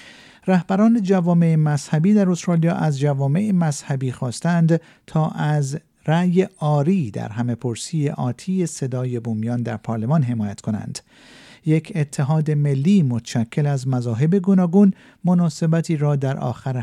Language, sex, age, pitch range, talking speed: Persian, male, 50-69, 125-170 Hz, 120 wpm